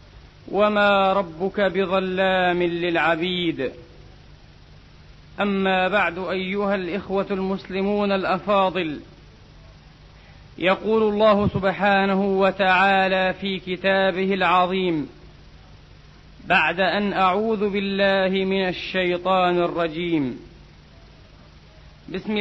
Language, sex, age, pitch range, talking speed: Arabic, male, 40-59, 180-210 Hz, 65 wpm